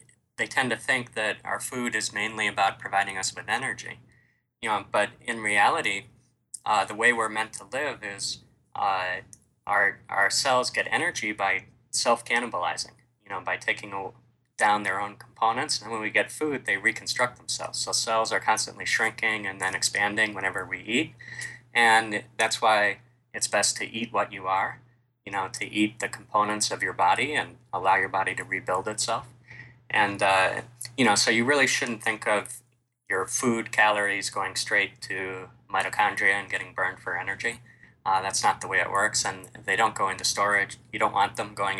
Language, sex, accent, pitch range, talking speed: English, male, American, 105-120 Hz, 185 wpm